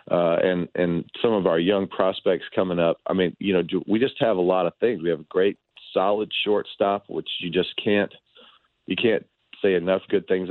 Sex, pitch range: male, 85-145 Hz